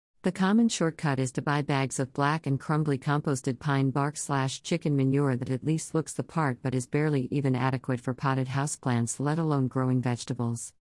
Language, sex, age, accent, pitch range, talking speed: English, female, 50-69, American, 130-155 Hz, 190 wpm